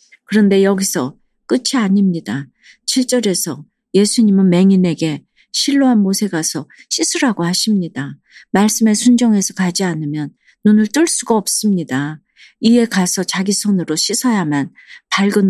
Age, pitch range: 40-59, 175-220 Hz